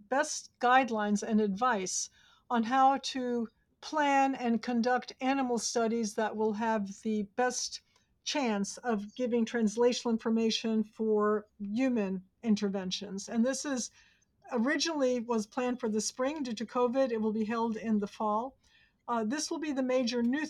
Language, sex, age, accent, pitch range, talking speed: English, female, 60-79, American, 215-245 Hz, 150 wpm